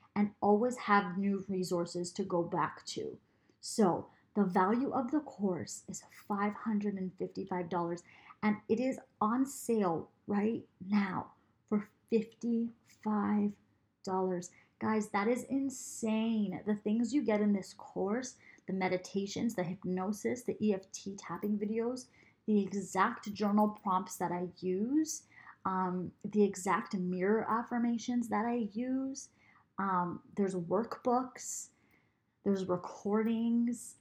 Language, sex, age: English, female, 30-49